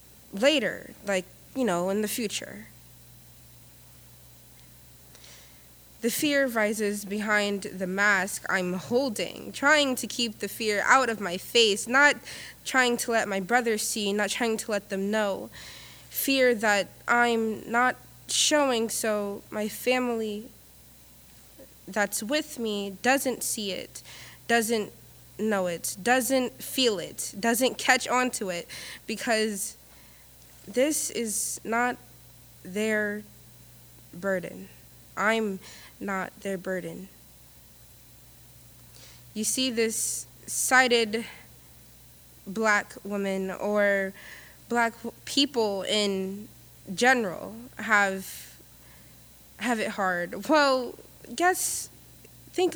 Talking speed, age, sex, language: 100 wpm, 20-39, female, English